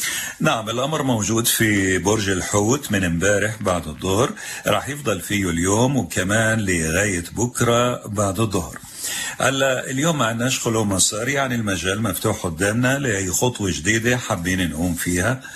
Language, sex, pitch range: Arabic, male, 95-125 Hz